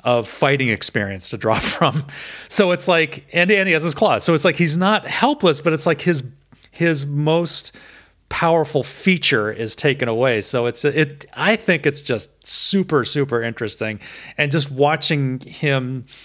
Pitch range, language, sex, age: 110-145 Hz, English, male, 40-59